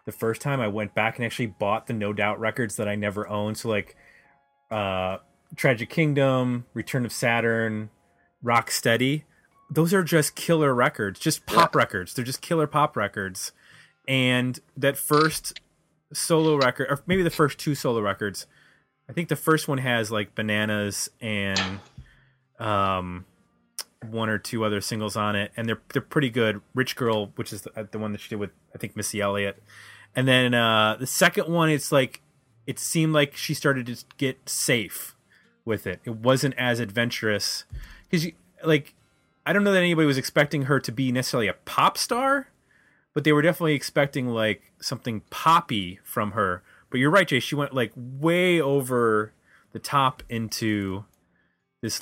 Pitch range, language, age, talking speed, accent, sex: 105-145 Hz, English, 20-39, 175 wpm, American, male